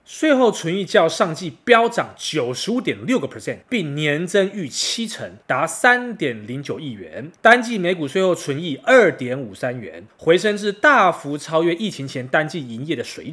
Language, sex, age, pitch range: Chinese, male, 20-39, 155-205 Hz